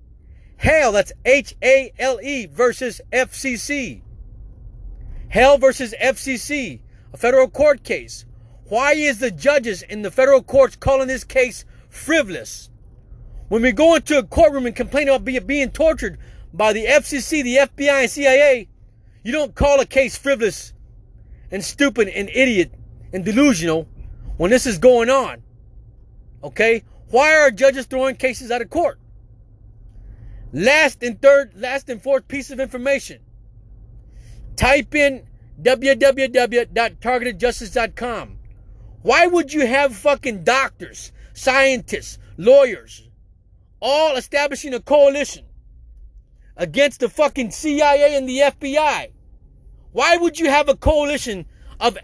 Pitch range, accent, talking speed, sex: 175-275 Hz, American, 120 wpm, male